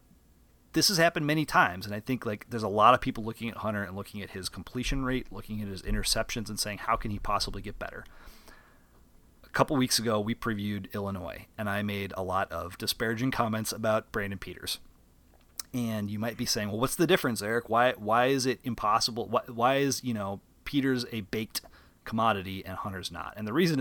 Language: English